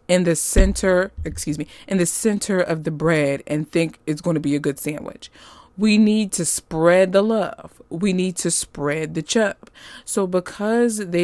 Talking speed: 185 wpm